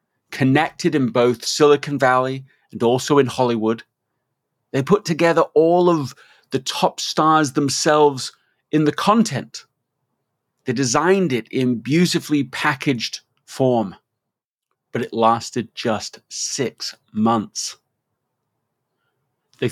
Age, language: 30-49, English